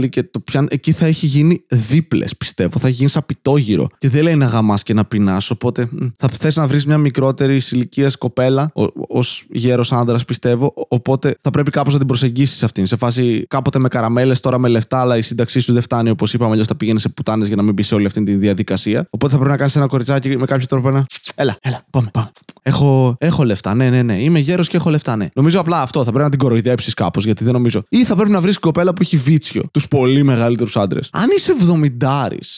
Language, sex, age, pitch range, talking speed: Greek, male, 20-39, 115-145 Hz, 235 wpm